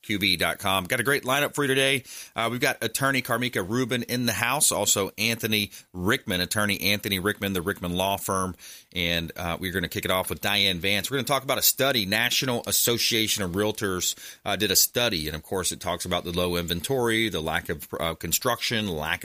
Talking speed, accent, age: 210 wpm, American, 30-49